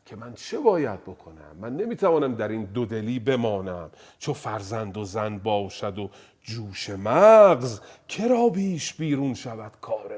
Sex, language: male, Persian